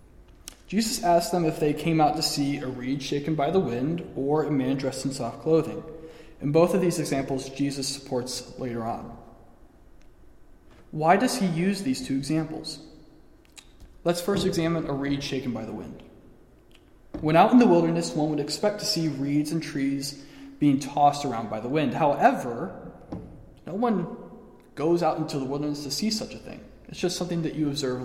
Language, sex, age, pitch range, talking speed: English, male, 20-39, 130-170 Hz, 180 wpm